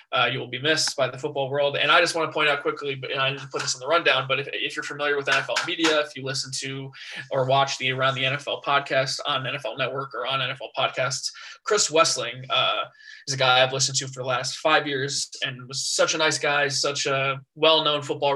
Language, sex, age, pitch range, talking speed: English, male, 20-39, 135-155 Hz, 245 wpm